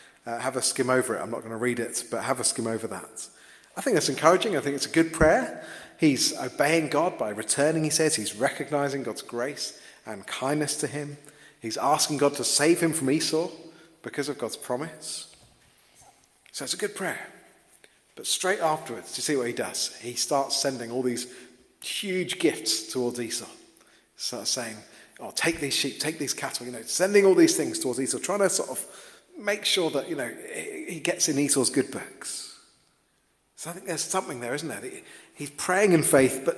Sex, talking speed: male, 200 wpm